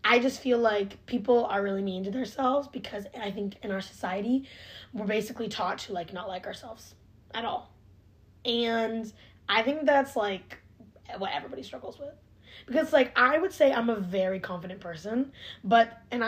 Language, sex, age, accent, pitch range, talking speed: English, female, 20-39, American, 185-260 Hz, 175 wpm